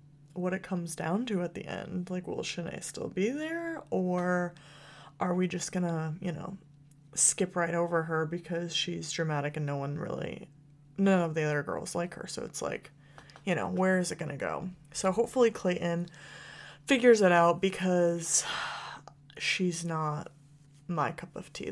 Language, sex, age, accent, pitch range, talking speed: English, female, 30-49, American, 160-190 Hz, 175 wpm